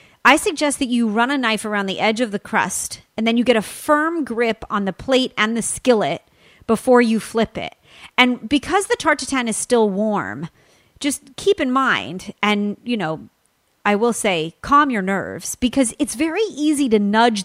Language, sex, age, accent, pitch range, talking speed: English, female, 30-49, American, 205-250 Hz, 195 wpm